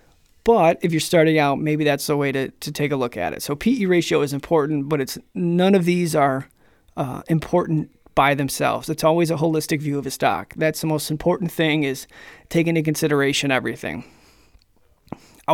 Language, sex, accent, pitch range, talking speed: English, male, American, 150-170 Hz, 195 wpm